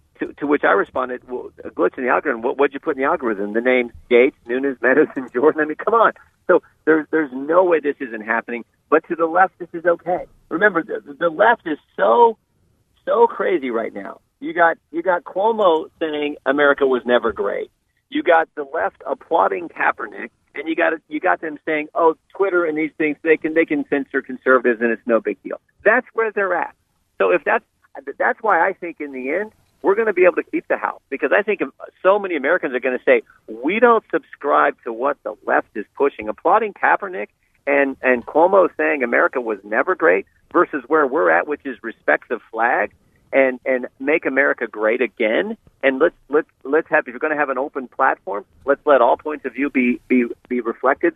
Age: 50-69